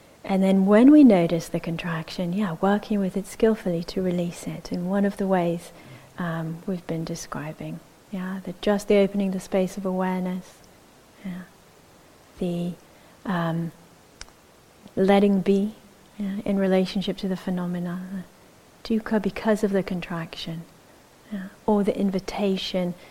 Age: 40-59